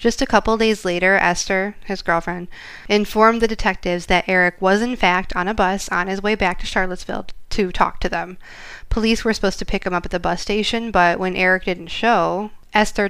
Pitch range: 180-215 Hz